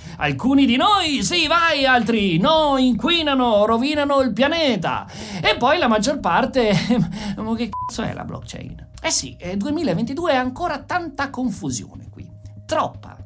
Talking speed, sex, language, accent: 135 wpm, male, Italian, native